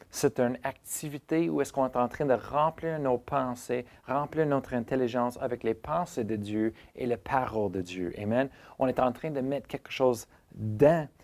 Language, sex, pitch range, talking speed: French, male, 110-135 Hz, 190 wpm